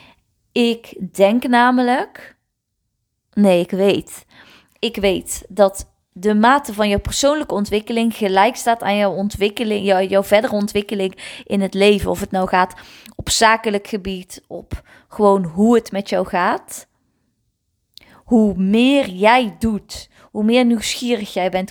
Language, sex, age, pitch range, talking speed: Dutch, female, 20-39, 195-235 Hz, 135 wpm